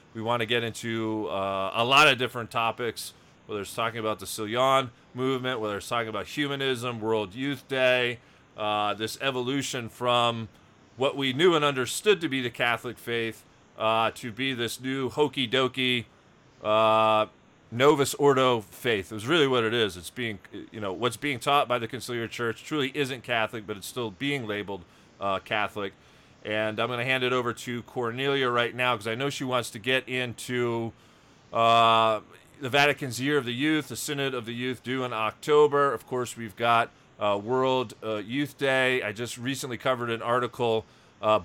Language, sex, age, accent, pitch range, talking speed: English, male, 30-49, American, 110-135 Hz, 185 wpm